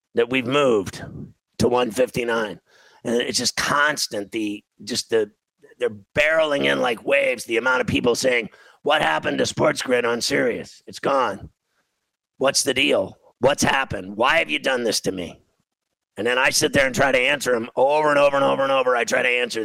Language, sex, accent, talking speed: English, male, American, 190 wpm